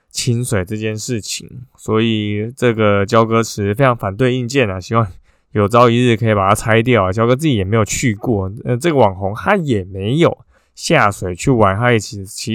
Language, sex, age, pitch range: Chinese, male, 20-39, 105-130 Hz